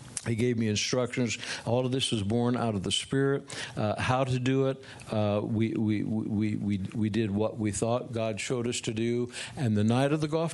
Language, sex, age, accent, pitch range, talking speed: English, male, 60-79, American, 110-135 Hz, 220 wpm